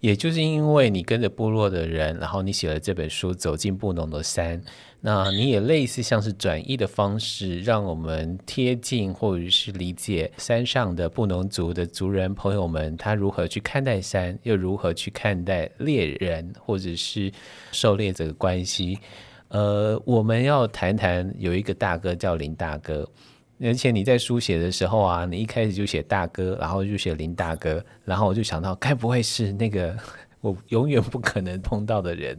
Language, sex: Chinese, male